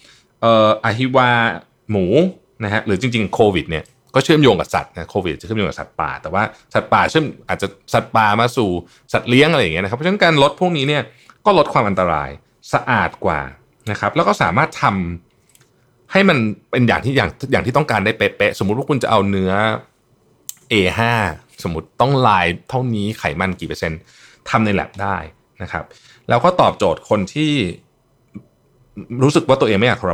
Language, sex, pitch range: Thai, male, 100-135 Hz